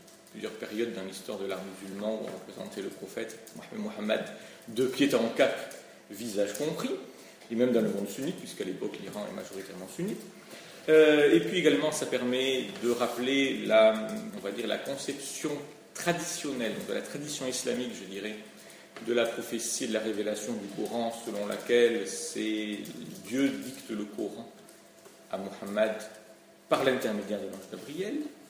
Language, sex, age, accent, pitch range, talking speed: French, male, 40-59, French, 105-145 Hz, 160 wpm